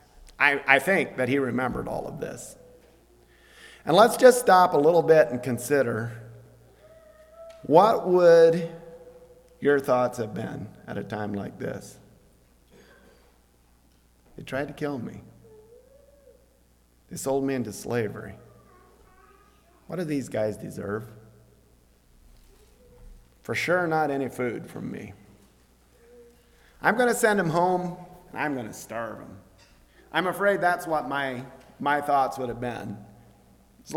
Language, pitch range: English, 115-170 Hz